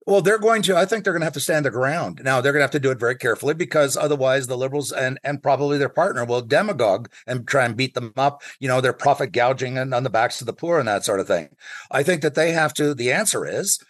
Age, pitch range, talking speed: 50-69, 135-180 Hz, 290 wpm